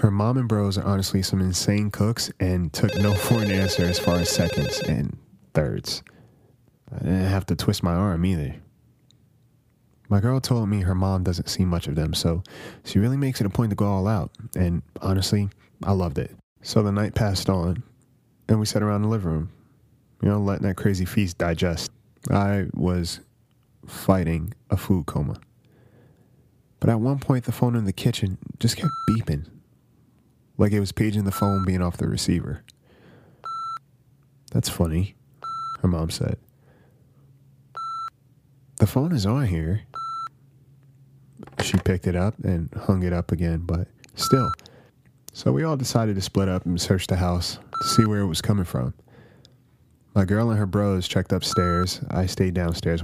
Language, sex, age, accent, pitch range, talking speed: English, male, 20-39, American, 95-125 Hz, 170 wpm